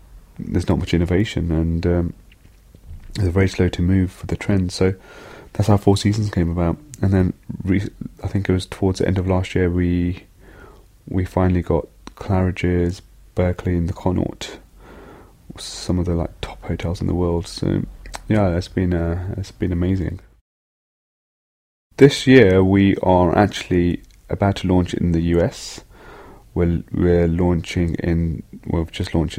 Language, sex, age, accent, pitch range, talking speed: English, male, 30-49, British, 85-95 Hz, 160 wpm